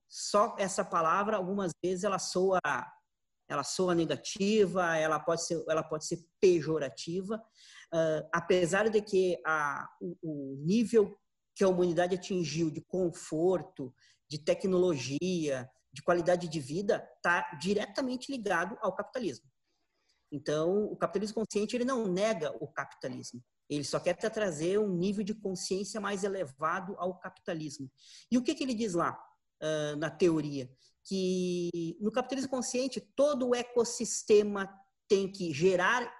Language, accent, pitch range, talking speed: Portuguese, Brazilian, 160-205 Hz, 135 wpm